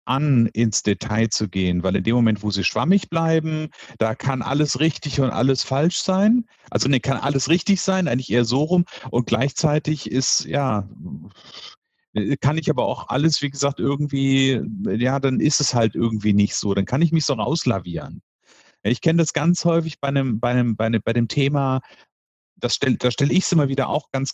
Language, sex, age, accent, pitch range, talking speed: German, male, 50-69, German, 115-165 Hz, 200 wpm